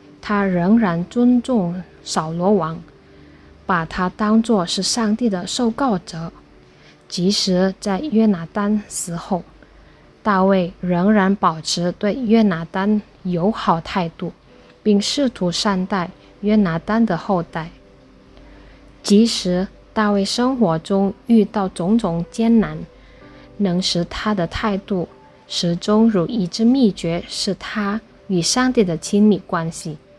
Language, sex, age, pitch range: Indonesian, female, 20-39, 170-215 Hz